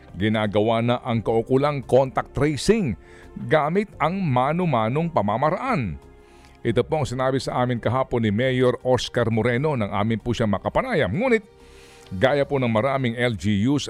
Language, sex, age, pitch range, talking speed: Filipino, male, 50-69, 110-150 Hz, 135 wpm